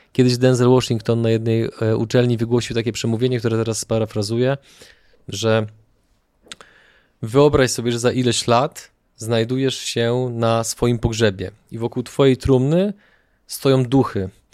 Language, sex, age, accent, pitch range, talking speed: Polish, male, 20-39, native, 115-135 Hz, 125 wpm